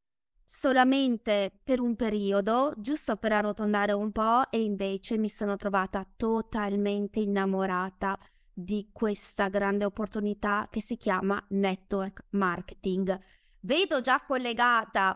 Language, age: Italian, 20-39